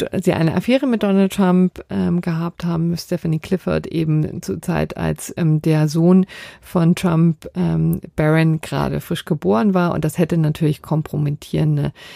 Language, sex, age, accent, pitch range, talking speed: German, female, 50-69, German, 155-190 Hz, 160 wpm